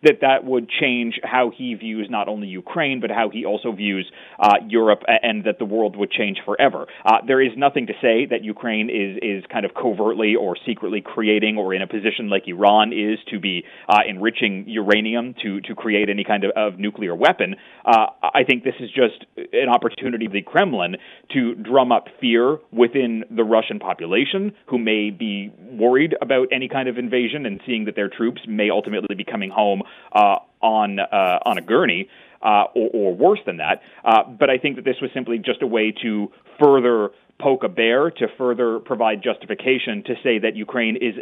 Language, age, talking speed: English, 30-49, 195 wpm